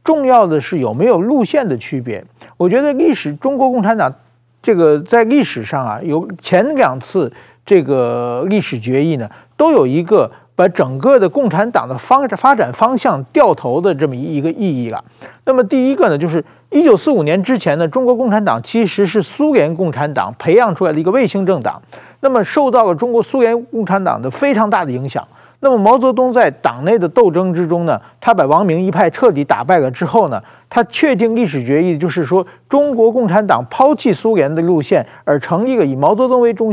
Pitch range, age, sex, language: 155-255 Hz, 50-69, male, Chinese